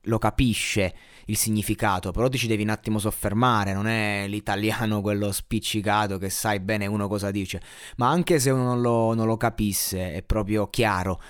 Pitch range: 100-120 Hz